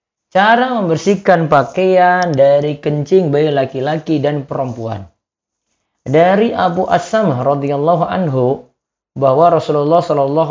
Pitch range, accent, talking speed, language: 130-180 Hz, native, 95 wpm, Indonesian